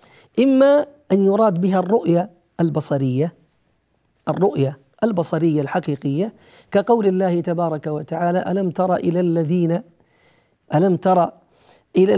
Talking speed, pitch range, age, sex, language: 100 wpm, 155-205 Hz, 40-59, male, Arabic